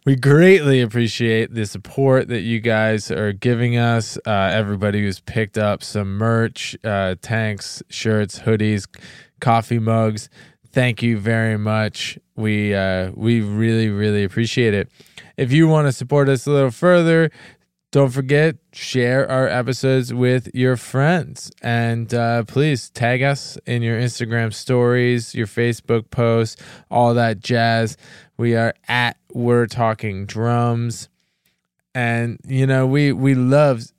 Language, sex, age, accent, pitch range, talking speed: English, male, 20-39, American, 110-130 Hz, 140 wpm